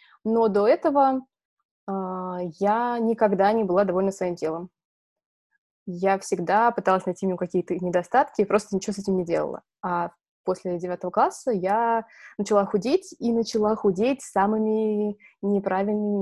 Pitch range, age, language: 180-245 Hz, 20-39, Russian